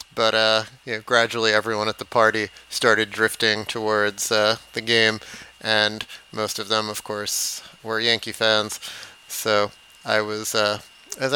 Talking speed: 145 wpm